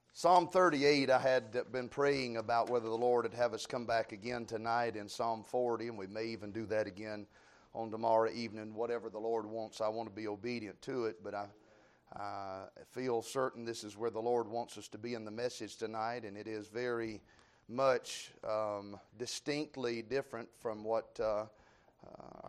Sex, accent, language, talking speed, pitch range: male, American, English, 190 wpm, 110-140 Hz